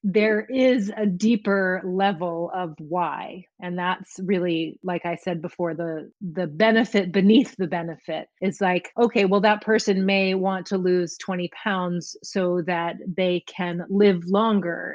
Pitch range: 175-205 Hz